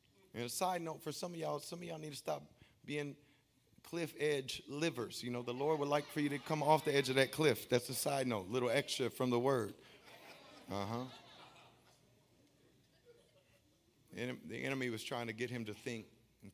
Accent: American